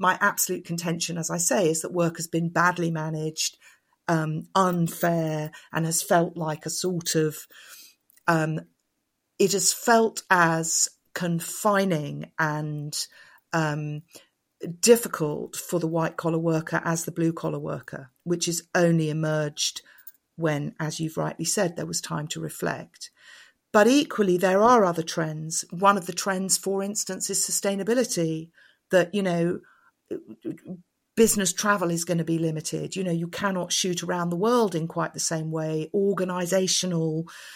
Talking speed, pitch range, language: 150 wpm, 165-190 Hz, English